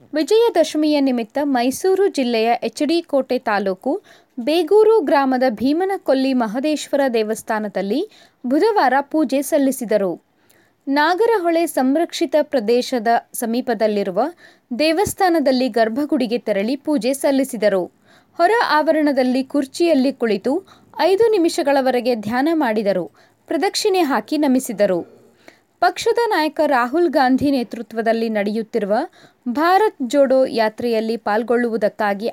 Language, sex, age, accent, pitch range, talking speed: Kannada, female, 20-39, native, 235-335 Hz, 80 wpm